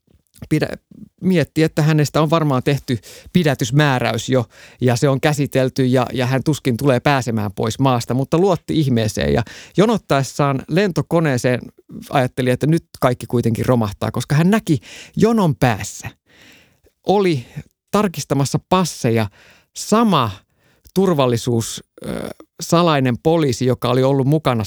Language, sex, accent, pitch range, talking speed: Finnish, male, native, 120-165 Hz, 115 wpm